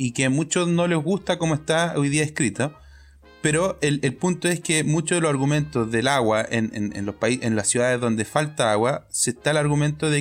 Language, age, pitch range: Spanish, 30-49, 110-140 Hz